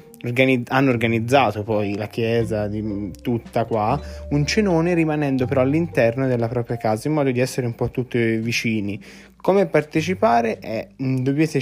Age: 20-39